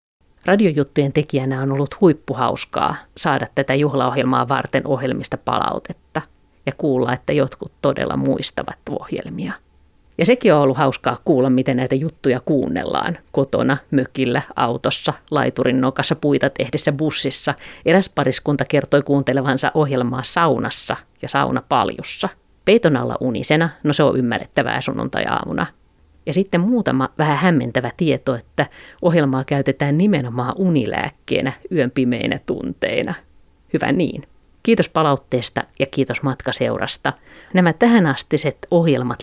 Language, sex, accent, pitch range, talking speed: Finnish, female, native, 130-160 Hz, 120 wpm